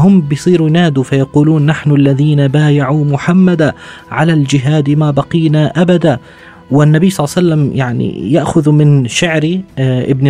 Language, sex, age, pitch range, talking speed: Arabic, male, 30-49, 120-155 Hz, 135 wpm